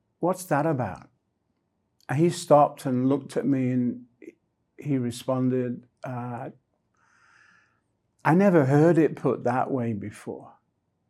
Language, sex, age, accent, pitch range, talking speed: English, male, 50-69, British, 120-145 Hz, 120 wpm